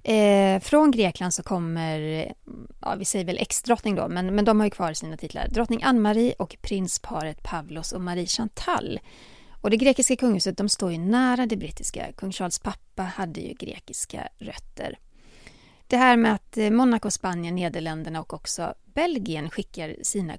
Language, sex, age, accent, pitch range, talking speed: Swedish, female, 30-49, native, 170-230 Hz, 160 wpm